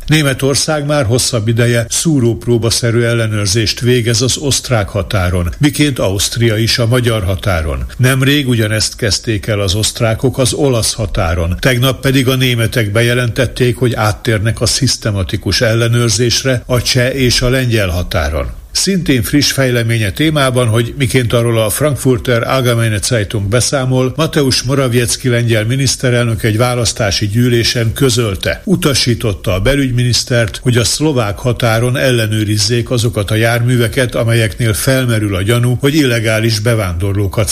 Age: 60-79